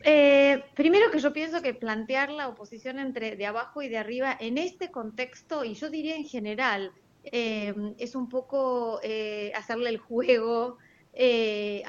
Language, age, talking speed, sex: Spanish, 20-39, 160 wpm, female